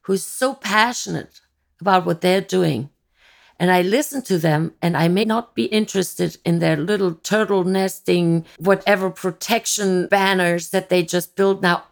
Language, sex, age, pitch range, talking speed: English, female, 50-69, 175-210 Hz, 155 wpm